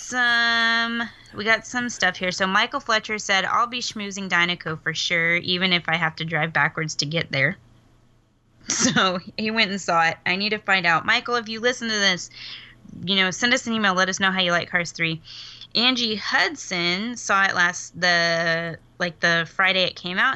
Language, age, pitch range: English, 20-39, 165-220 Hz